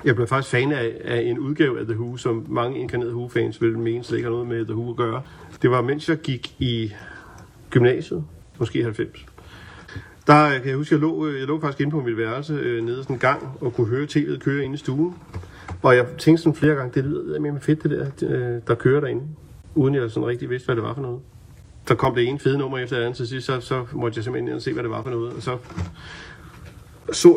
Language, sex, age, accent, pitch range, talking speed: Danish, male, 30-49, native, 115-145 Hz, 245 wpm